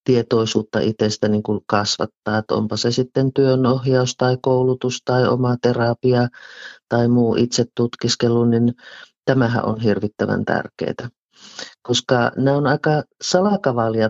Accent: native